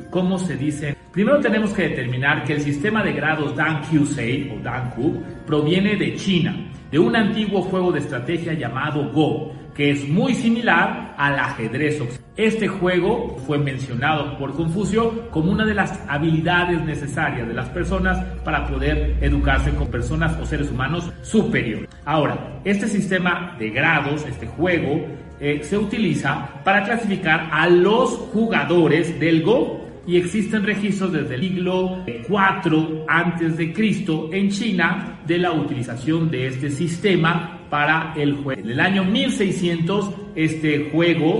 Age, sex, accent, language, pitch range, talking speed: 40-59, male, Mexican, Spanish, 145-190 Hz, 145 wpm